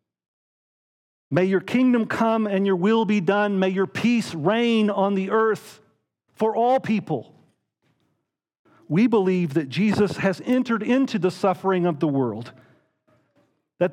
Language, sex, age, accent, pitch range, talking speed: English, male, 50-69, American, 155-220 Hz, 140 wpm